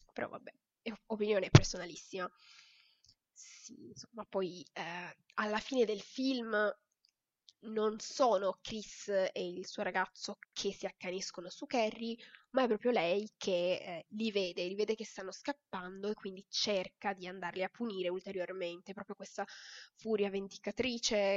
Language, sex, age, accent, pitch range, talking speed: Italian, female, 20-39, native, 185-220 Hz, 140 wpm